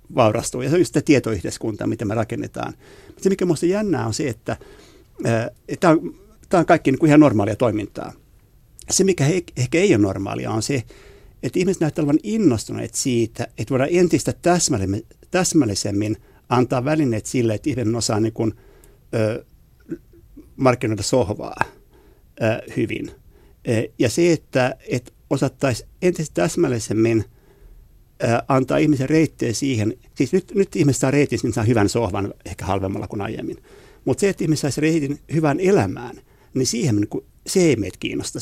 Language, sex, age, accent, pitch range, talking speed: Finnish, male, 60-79, native, 110-150 Hz, 150 wpm